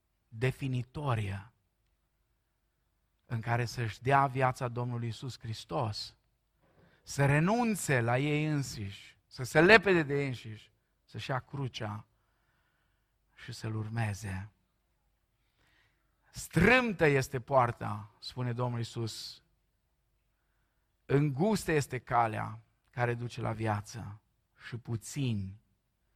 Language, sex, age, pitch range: Romanian, male, 50-69, 110-135 Hz